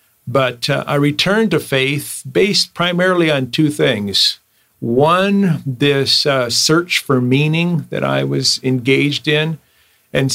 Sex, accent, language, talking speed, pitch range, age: male, American, English, 135 wpm, 125-145 Hz, 50-69